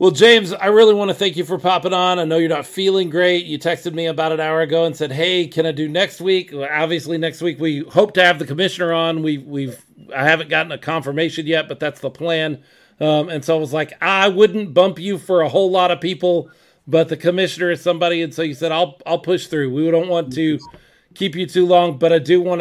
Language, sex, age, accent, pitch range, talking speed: English, male, 40-59, American, 145-175 Hz, 255 wpm